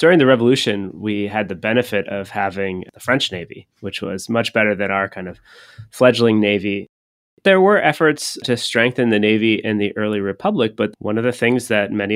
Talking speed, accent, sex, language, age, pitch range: 195 wpm, American, male, English, 30-49, 100-115 Hz